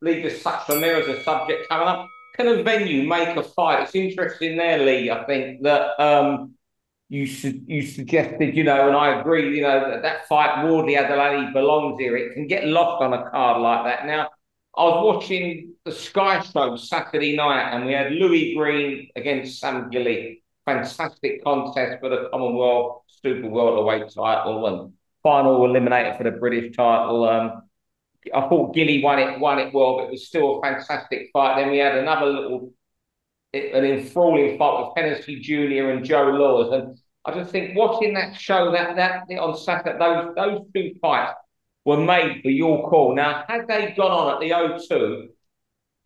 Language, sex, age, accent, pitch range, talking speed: English, male, 50-69, British, 135-175 Hz, 185 wpm